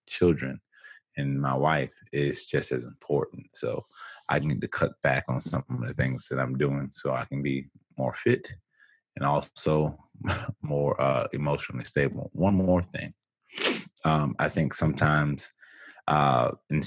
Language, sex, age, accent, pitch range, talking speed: English, male, 20-39, American, 70-80 Hz, 155 wpm